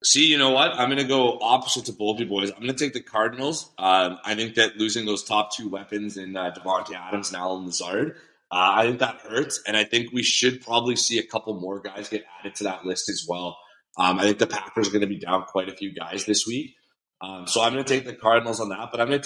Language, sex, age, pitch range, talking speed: English, male, 30-49, 100-135 Hz, 270 wpm